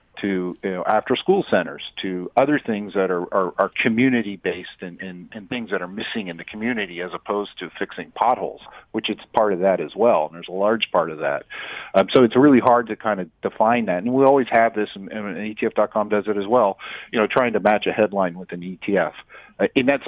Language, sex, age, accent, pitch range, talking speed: English, male, 40-59, American, 95-115 Hz, 235 wpm